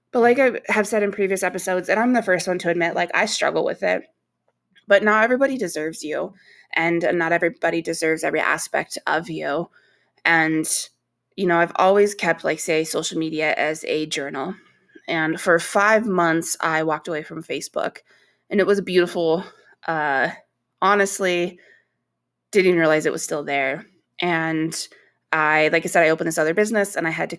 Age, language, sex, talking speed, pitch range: 20-39, English, female, 180 wpm, 160-195 Hz